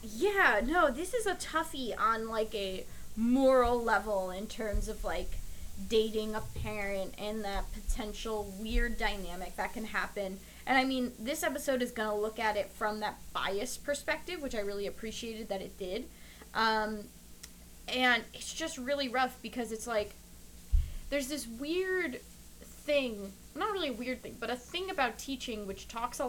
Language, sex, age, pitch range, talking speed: English, female, 20-39, 200-260 Hz, 170 wpm